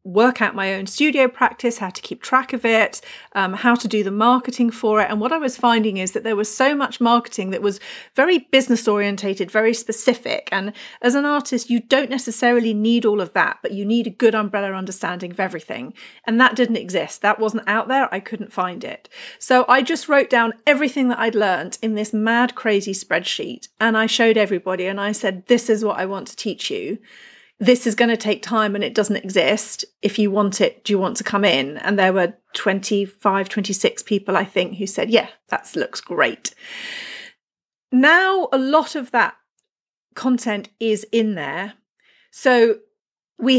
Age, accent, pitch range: 40-59, British, 200-245 Hz